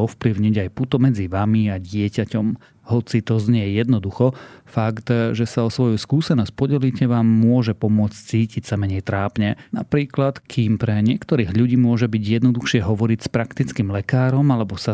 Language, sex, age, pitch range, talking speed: Slovak, male, 30-49, 105-125 Hz, 155 wpm